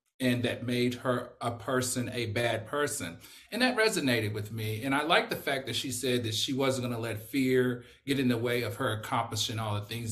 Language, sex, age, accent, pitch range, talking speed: English, male, 40-59, American, 110-130 Hz, 225 wpm